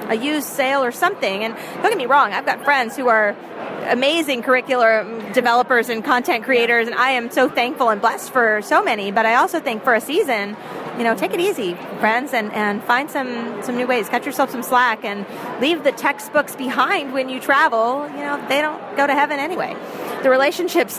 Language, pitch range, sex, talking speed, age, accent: English, 215-280 Hz, female, 210 wpm, 30-49, American